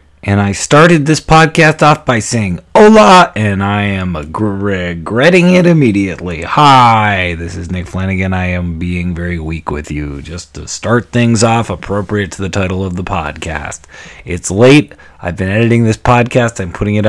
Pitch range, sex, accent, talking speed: 95-120 Hz, male, American, 170 wpm